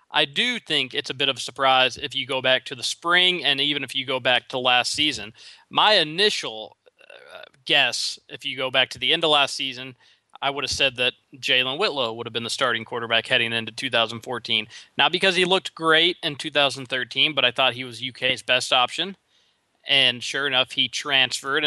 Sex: male